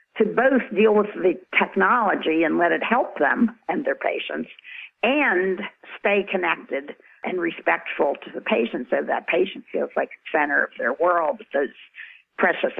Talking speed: 160 wpm